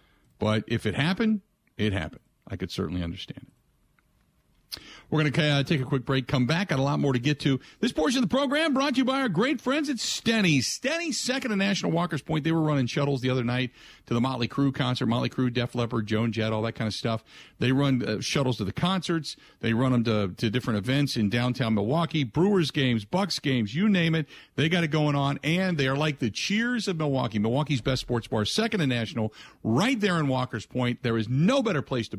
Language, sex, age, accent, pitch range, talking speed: English, male, 50-69, American, 115-155 Hz, 235 wpm